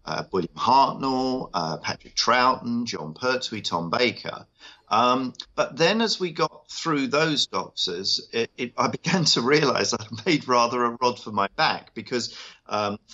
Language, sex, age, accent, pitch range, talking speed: English, male, 40-59, British, 100-130 Hz, 155 wpm